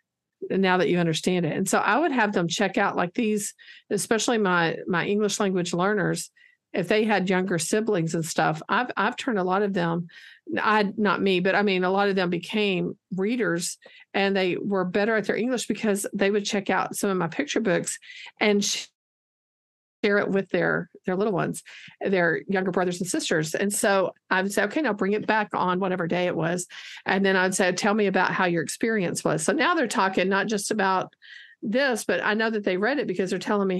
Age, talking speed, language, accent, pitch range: 50-69, 215 wpm, English, American, 190-225 Hz